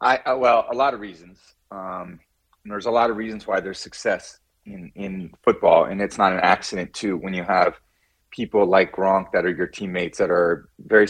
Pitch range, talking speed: 95-130 Hz, 205 wpm